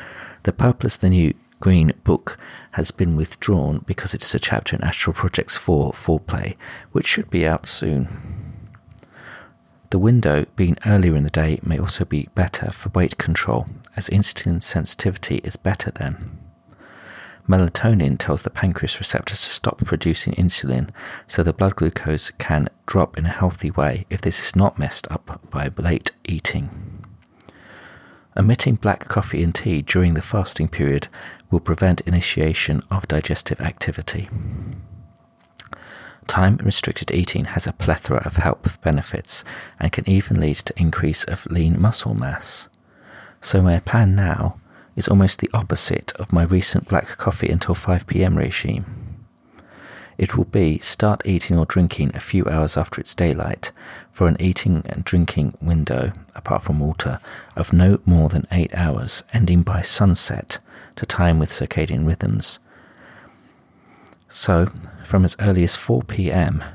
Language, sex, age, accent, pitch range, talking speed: English, male, 40-59, British, 80-100 Hz, 145 wpm